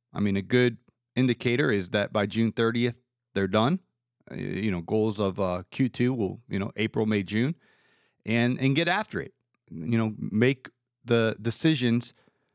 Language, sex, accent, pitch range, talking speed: English, male, American, 110-130 Hz, 165 wpm